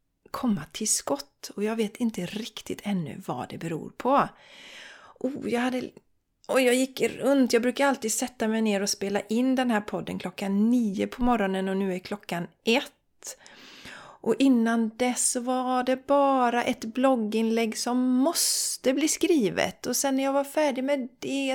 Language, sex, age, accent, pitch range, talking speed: Swedish, female, 30-49, native, 195-260 Hz, 170 wpm